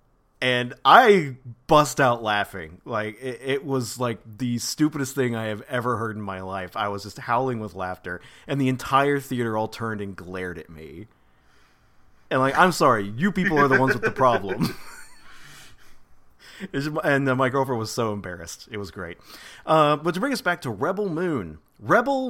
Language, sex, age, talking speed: English, male, 40-59, 185 wpm